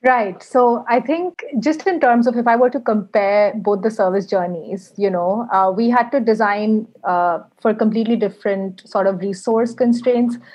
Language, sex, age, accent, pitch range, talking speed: English, female, 30-49, Indian, 195-240 Hz, 180 wpm